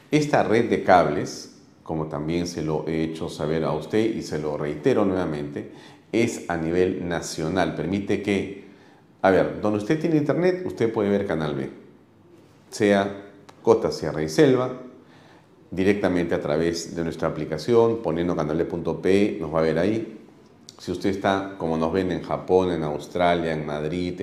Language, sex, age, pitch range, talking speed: Spanish, male, 40-59, 80-95 Hz, 165 wpm